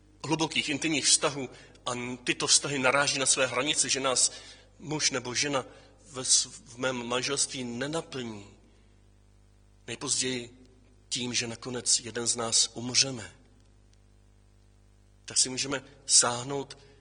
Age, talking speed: 40-59, 110 wpm